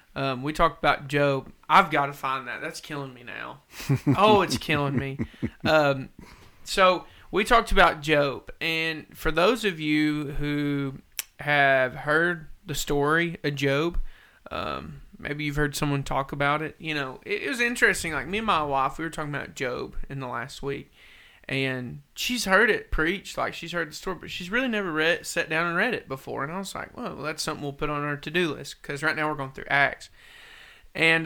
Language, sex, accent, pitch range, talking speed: English, male, American, 140-170 Hz, 200 wpm